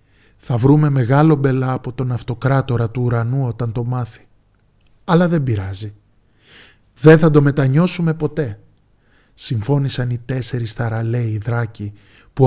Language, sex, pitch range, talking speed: Greek, male, 110-150 Hz, 125 wpm